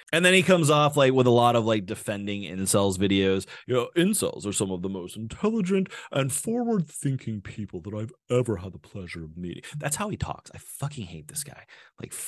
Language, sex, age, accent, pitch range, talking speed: English, male, 30-49, American, 105-165 Hz, 220 wpm